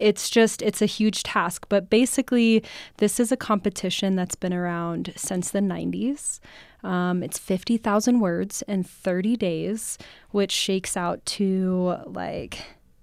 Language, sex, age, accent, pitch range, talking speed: English, female, 20-39, American, 185-215 Hz, 140 wpm